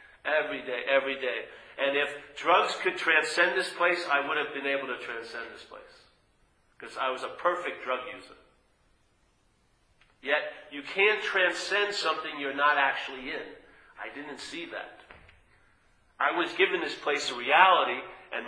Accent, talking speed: American, 155 wpm